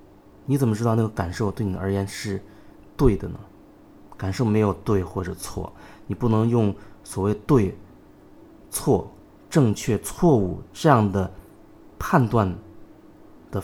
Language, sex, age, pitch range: Chinese, male, 20-39, 100-130 Hz